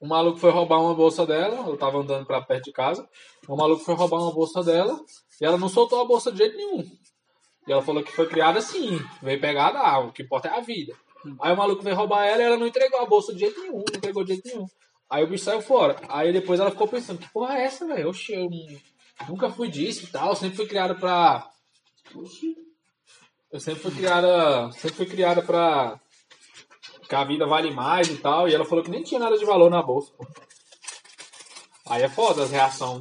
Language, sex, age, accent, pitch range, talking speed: Portuguese, male, 20-39, Brazilian, 145-240 Hz, 225 wpm